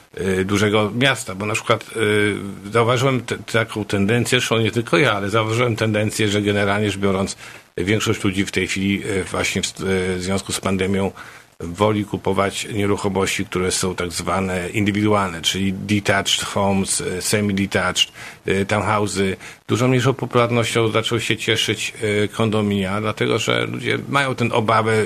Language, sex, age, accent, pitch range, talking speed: Polish, male, 50-69, native, 95-115 Hz, 145 wpm